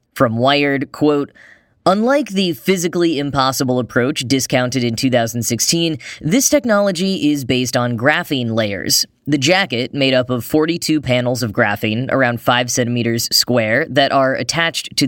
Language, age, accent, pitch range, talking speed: English, 10-29, American, 120-160 Hz, 140 wpm